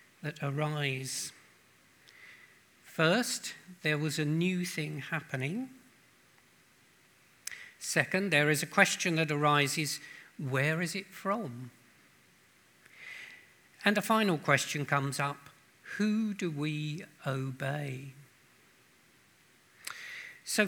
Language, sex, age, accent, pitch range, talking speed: English, male, 50-69, British, 145-195 Hz, 90 wpm